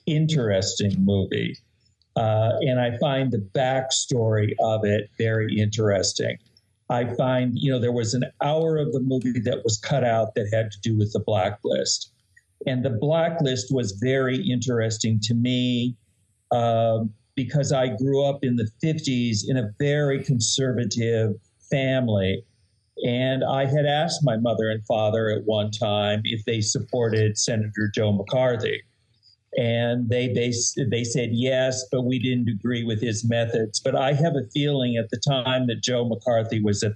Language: English